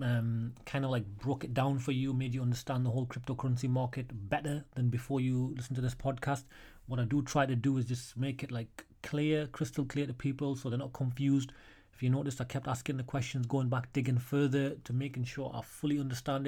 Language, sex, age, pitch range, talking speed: English, male, 30-49, 125-145 Hz, 225 wpm